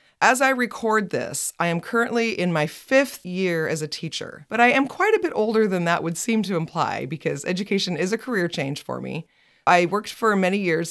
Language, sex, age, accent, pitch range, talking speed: English, female, 30-49, American, 160-220 Hz, 220 wpm